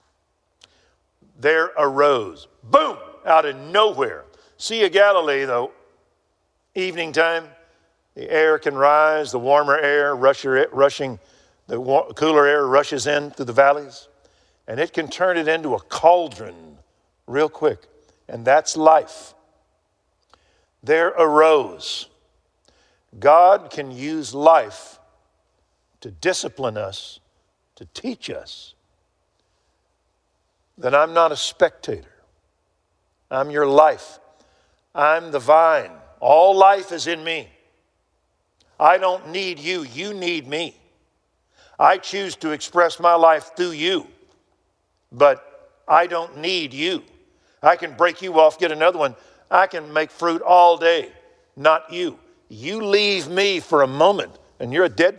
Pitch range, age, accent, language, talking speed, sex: 140-180 Hz, 50-69, American, English, 125 wpm, male